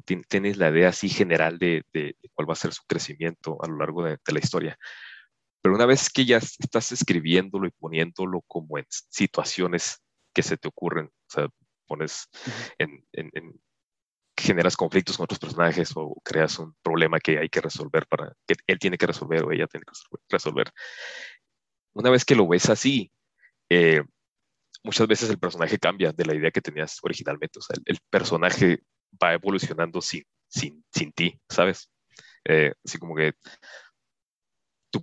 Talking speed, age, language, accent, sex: 175 wpm, 30-49, Spanish, Mexican, male